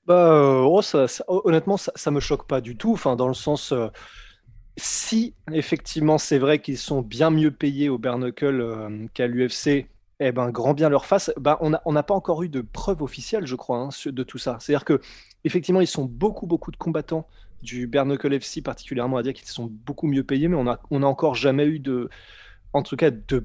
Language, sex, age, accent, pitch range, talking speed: French, male, 20-39, French, 130-160 Hz, 210 wpm